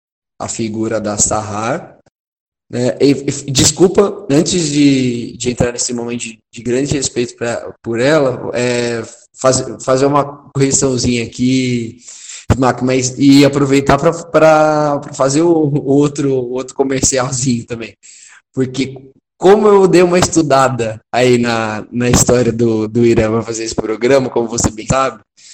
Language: Portuguese